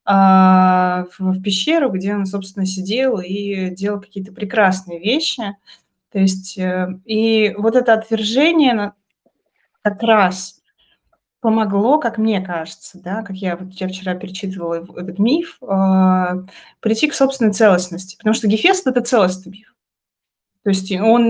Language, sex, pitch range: Russian, female, 185-235 Hz